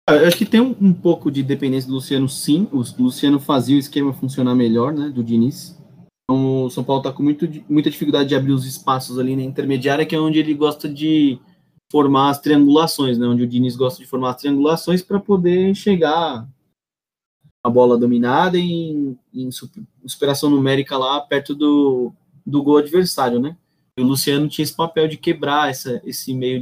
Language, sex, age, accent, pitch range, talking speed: Portuguese, male, 20-39, Brazilian, 125-155 Hz, 185 wpm